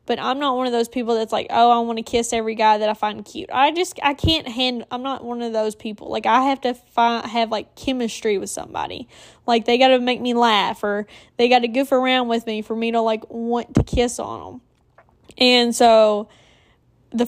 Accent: American